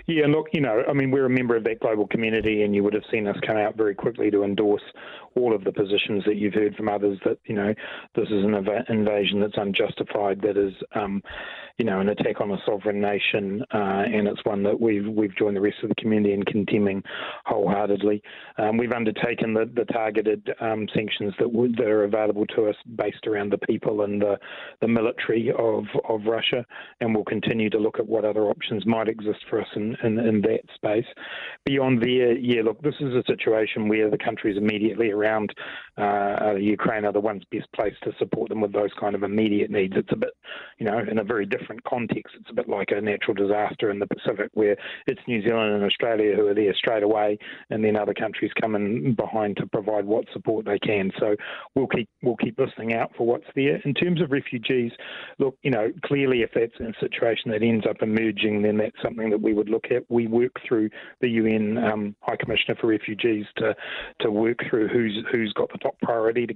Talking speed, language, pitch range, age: 215 wpm, English, 105-120 Hz, 30-49